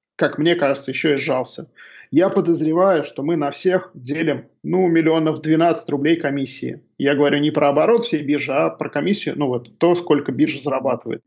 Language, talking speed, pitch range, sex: Russian, 180 wpm, 140-170 Hz, male